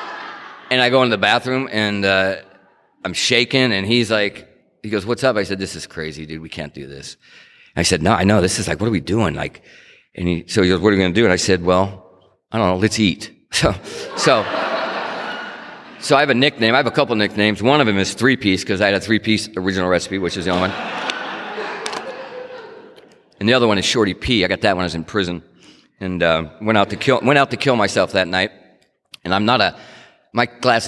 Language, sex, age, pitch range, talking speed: English, male, 40-59, 90-110 Hz, 245 wpm